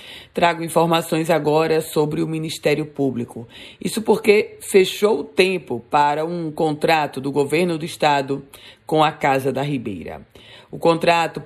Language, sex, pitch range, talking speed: Portuguese, female, 150-175 Hz, 135 wpm